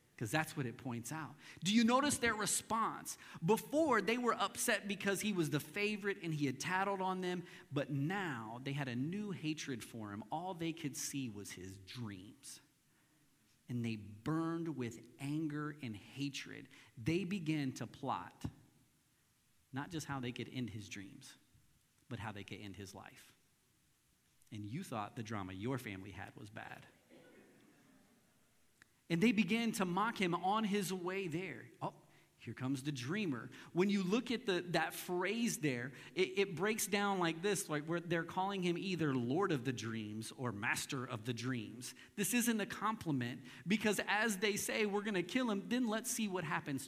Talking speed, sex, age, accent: 175 wpm, male, 40-59, American